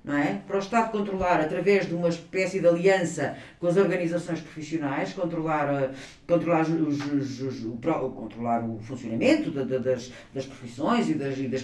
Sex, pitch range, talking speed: female, 135-220 Hz, 130 wpm